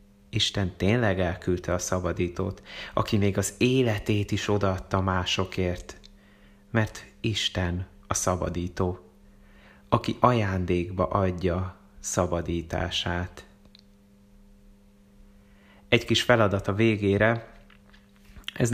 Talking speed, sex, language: 85 wpm, male, Hungarian